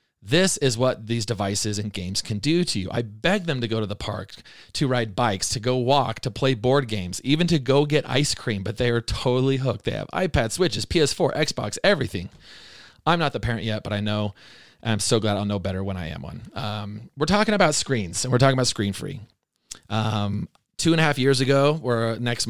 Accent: American